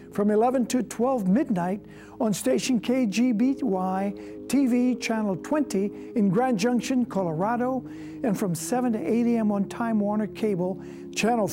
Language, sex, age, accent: English, male, 60-79, American